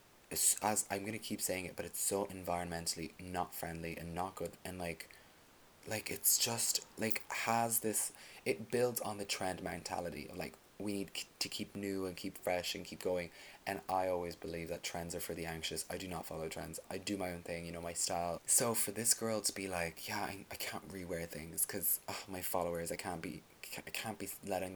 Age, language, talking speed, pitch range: 20-39, English, 225 wpm, 85-105 Hz